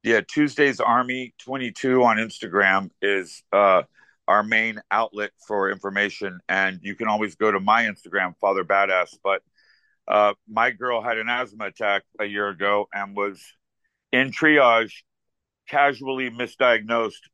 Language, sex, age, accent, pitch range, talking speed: English, male, 50-69, American, 105-120 Hz, 140 wpm